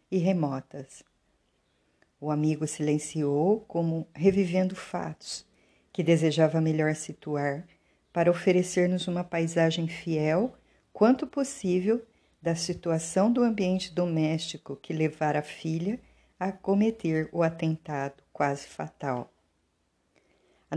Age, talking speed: 50-69, 100 wpm